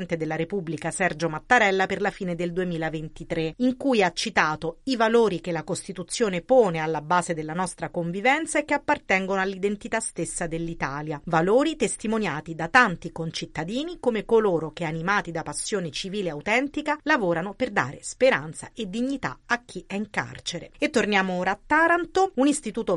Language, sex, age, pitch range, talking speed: Italian, female, 40-59, 170-235 Hz, 160 wpm